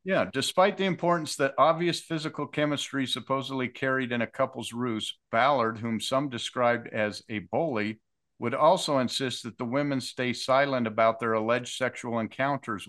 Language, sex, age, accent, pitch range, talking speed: English, male, 50-69, American, 110-130 Hz, 160 wpm